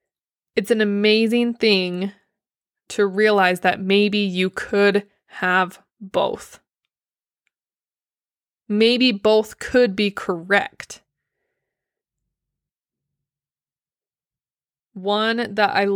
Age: 20-39